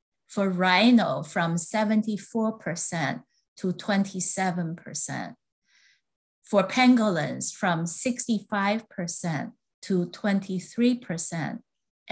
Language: English